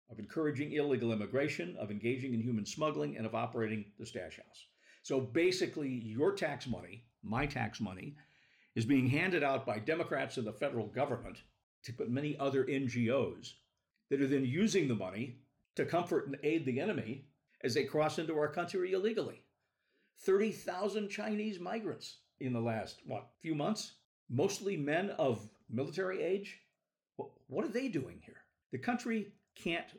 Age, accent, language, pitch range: 50-69, American, English, 110-150 Hz